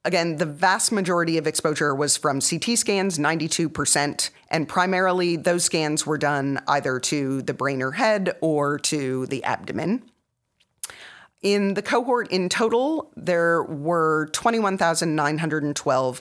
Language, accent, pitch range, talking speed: English, American, 145-195 Hz, 130 wpm